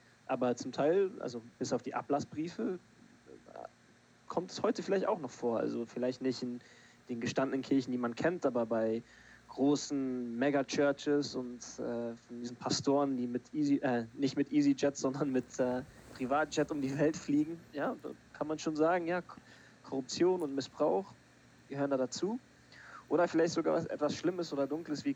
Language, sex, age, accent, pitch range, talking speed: German, male, 20-39, German, 115-140 Hz, 165 wpm